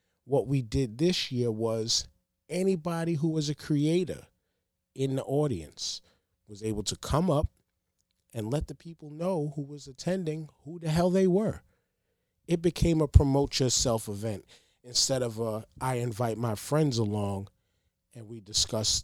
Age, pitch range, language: 30-49, 100-130 Hz, English